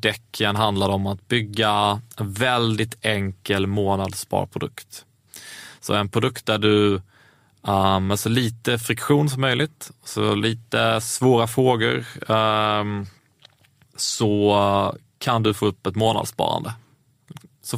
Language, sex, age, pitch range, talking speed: Swedish, male, 20-39, 100-125 Hz, 110 wpm